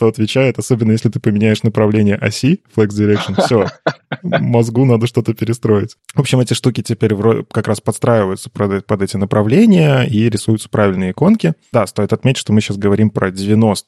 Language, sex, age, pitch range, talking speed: Russian, male, 20-39, 105-125 Hz, 170 wpm